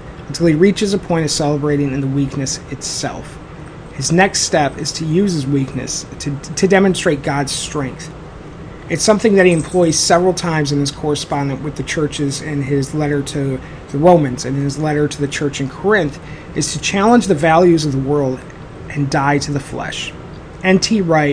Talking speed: 185 wpm